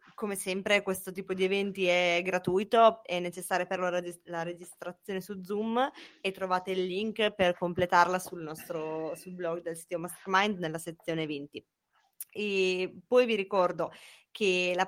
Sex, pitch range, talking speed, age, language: female, 175-200 Hz, 150 wpm, 20-39, Italian